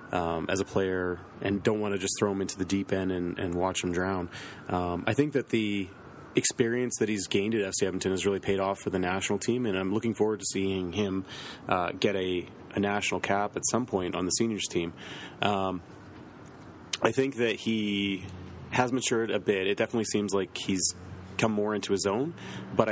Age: 30-49